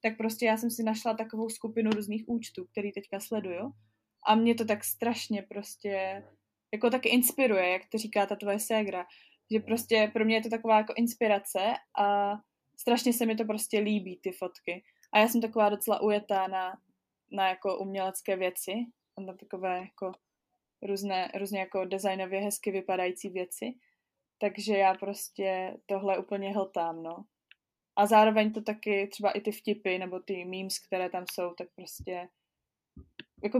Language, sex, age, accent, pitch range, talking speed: Czech, female, 20-39, native, 185-215 Hz, 165 wpm